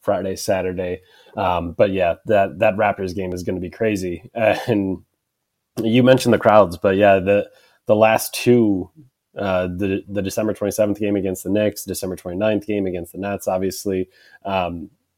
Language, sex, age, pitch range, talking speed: English, male, 20-39, 95-110 Hz, 170 wpm